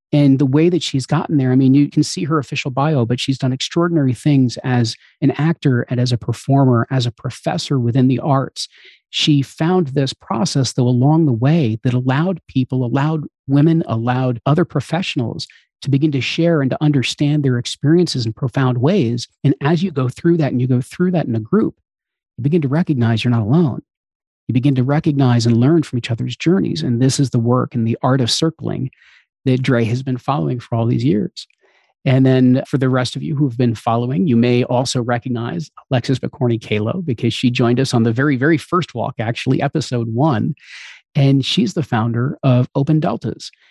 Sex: male